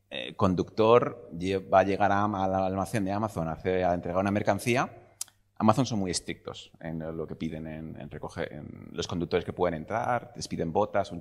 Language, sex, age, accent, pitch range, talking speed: Spanish, male, 30-49, Spanish, 95-115 Hz, 195 wpm